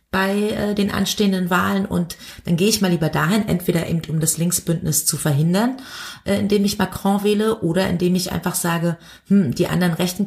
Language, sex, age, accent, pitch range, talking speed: German, female, 30-49, German, 160-195 Hz, 195 wpm